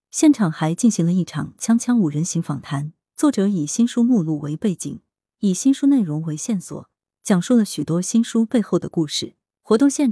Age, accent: 30-49, native